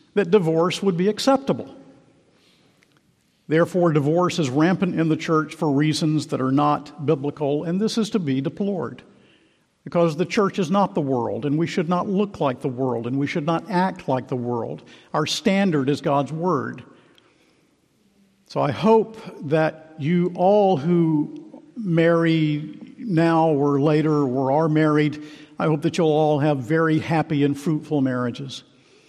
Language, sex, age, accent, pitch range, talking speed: English, male, 50-69, American, 145-175 Hz, 160 wpm